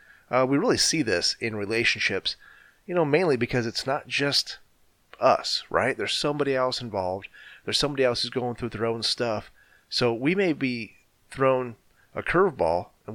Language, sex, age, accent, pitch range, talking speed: English, male, 30-49, American, 105-135 Hz, 170 wpm